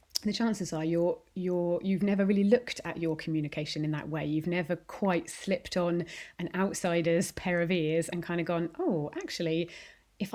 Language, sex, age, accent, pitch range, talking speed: English, female, 30-49, British, 165-210 Hz, 185 wpm